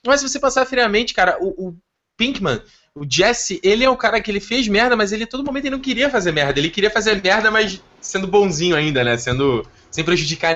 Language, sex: Portuguese, male